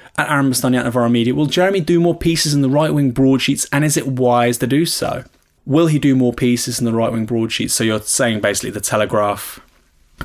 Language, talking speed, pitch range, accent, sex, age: English, 230 wpm, 115-140 Hz, British, male, 20-39